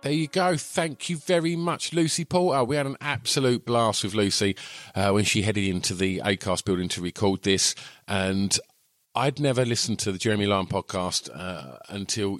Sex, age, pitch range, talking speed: male, 50-69, 90-125 Hz, 185 wpm